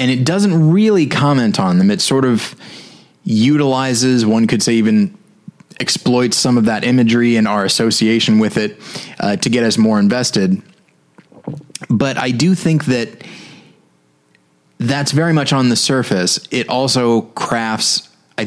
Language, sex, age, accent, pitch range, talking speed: English, male, 30-49, American, 110-145 Hz, 150 wpm